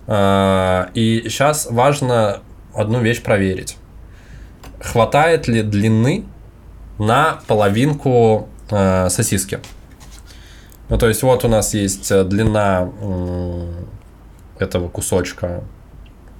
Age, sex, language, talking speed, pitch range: 20-39, male, Russian, 80 wpm, 95-120 Hz